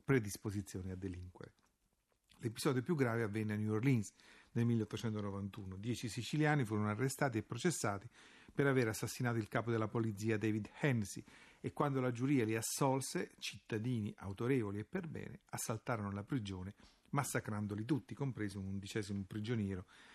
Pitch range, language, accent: 100-125 Hz, Italian, native